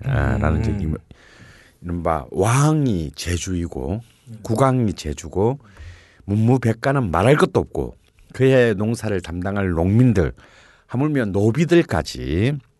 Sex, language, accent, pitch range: male, Korean, native, 80-115 Hz